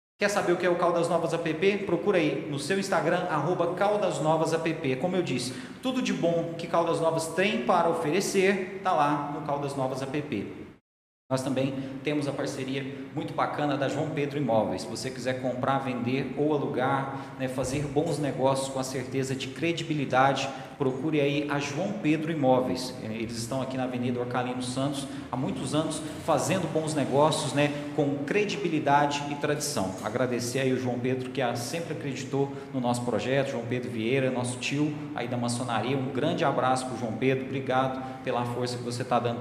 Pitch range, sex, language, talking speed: 130-155 Hz, male, Portuguese, 180 wpm